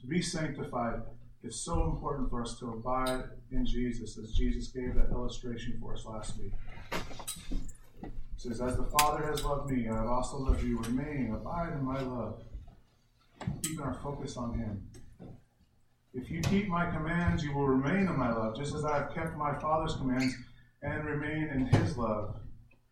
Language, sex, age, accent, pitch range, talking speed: English, male, 30-49, American, 120-155 Hz, 175 wpm